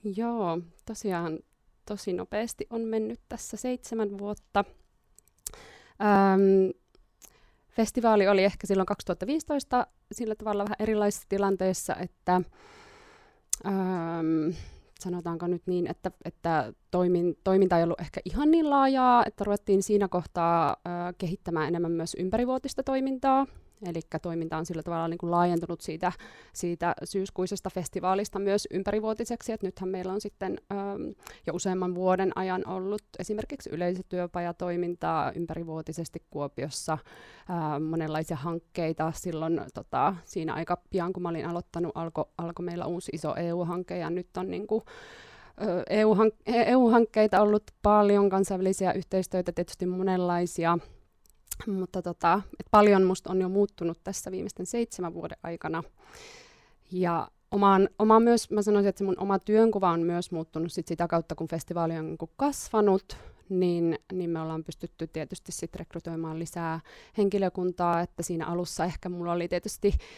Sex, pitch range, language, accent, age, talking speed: female, 170-205 Hz, Finnish, native, 20-39, 130 wpm